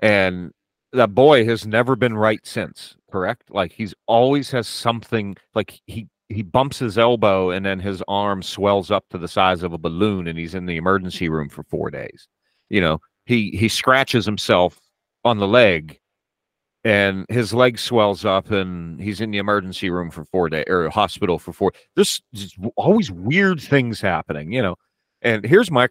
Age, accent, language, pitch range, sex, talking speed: 40-59, American, English, 90-115 Hz, male, 185 wpm